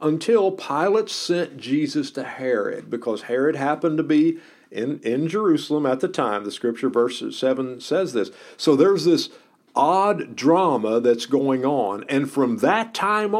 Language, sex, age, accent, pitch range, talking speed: English, male, 50-69, American, 120-195 Hz, 155 wpm